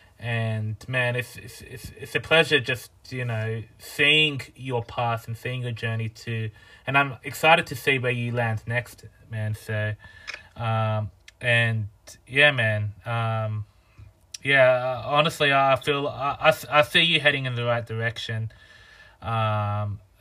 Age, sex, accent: 20-39, male, Australian